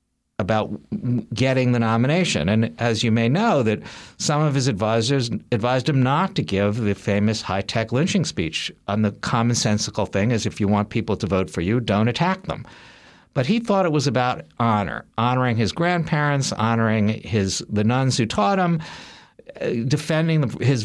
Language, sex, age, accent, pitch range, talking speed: English, male, 60-79, American, 110-150 Hz, 175 wpm